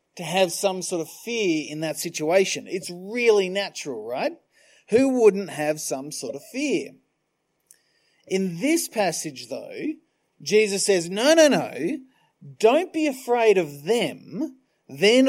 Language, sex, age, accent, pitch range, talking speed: English, male, 40-59, Australian, 190-265 Hz, 135 wpm